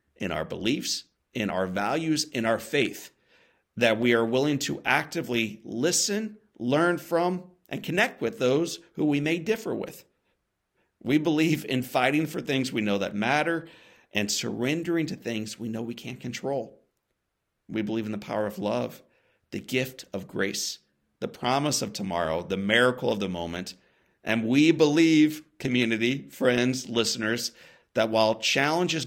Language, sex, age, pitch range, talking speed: English, male, 50-69, 110-150 Hz, 155 wpm